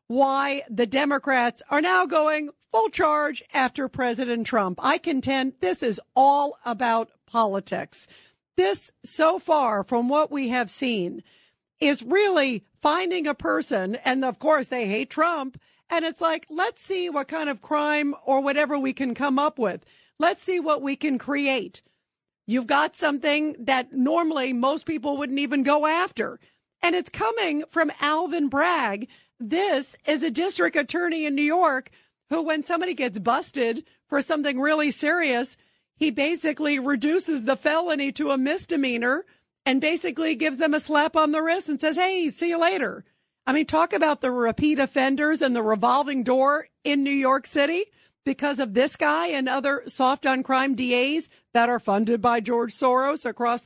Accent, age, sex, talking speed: American, 50-69, female, 165 wpm